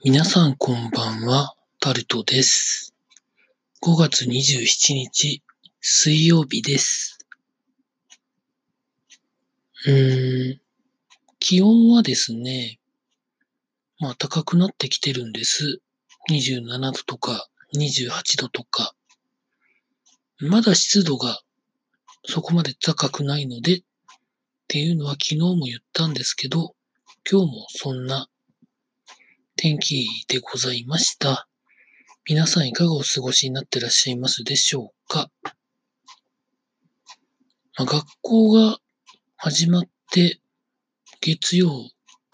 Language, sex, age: Japanese, male, 40-59